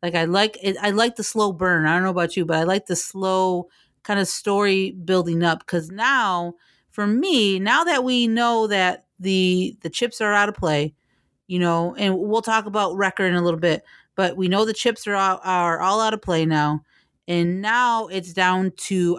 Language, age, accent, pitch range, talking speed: English, 30-49, American, 175-215 Hz, 215 wpm